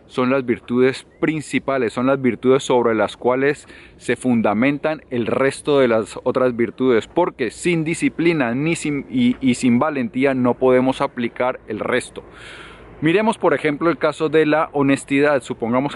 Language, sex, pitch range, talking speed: Spanish, male, 125-145 Hz, 145 wpm